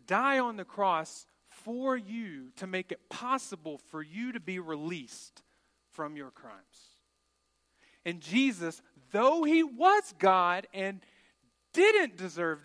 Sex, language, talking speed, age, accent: male, English, 130 wpm, 40-59, American